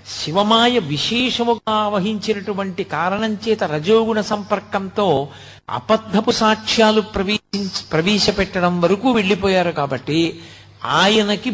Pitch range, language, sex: 140-215 Hz, Telugu, male